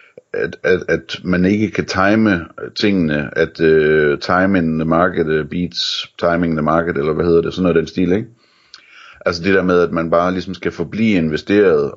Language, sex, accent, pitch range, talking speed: Danish, male, native, 80-100 Hz, 190 wpm